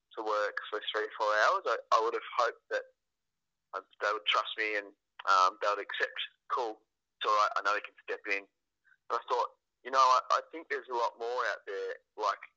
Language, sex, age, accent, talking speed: English, male, 20-39, Australian, 225 wpm